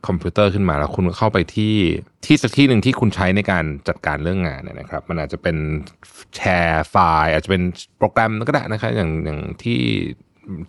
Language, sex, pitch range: Thai, male, 85-115 Hz